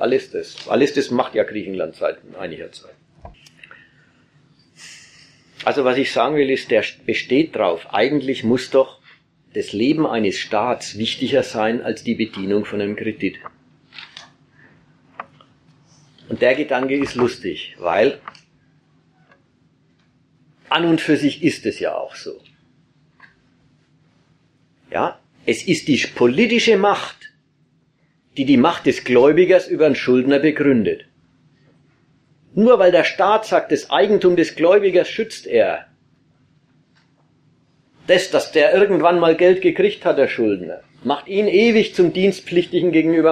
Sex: male